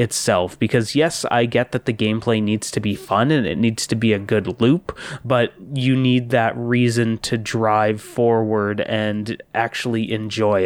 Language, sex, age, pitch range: English, male, 20-39, 110-130 Hz